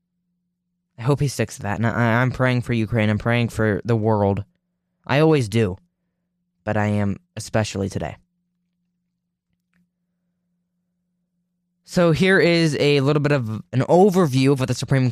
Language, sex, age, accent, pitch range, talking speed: English, male, 10-29, American, 130-175 Hz, 150 wpm